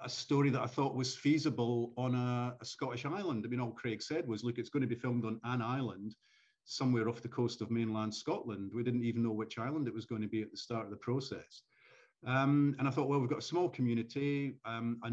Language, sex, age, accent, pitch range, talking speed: English, male, 40-59, British, 115-130 Hz, 250 wpm